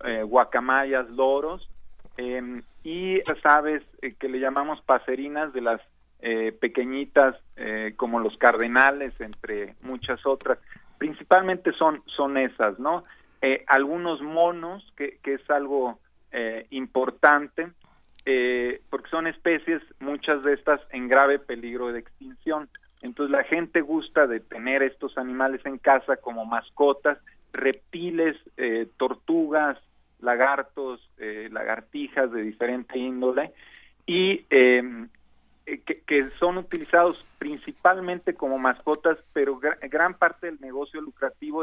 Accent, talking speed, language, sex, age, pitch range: Mexican, 125 wpm, Spanish, male, 40-59, 125-155 Hz